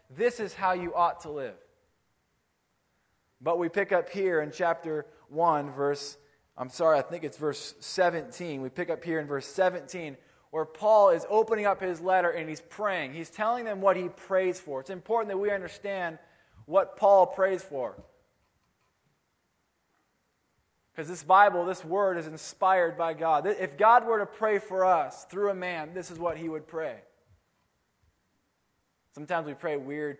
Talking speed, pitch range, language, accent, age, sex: 170 wpm, 145-185 Hz, English, American, 20-39, male